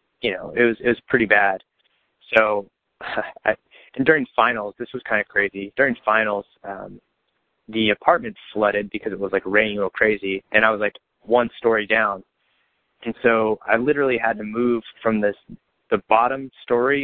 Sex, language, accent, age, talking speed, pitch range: male, English, American, 30-49, 175 wpm, 105-120 Hz